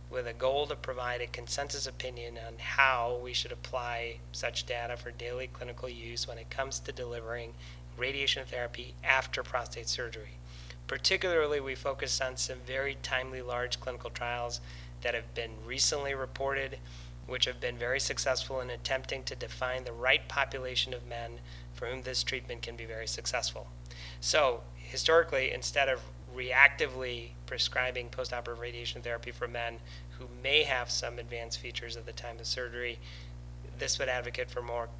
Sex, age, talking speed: male, 30-49, 160 wpm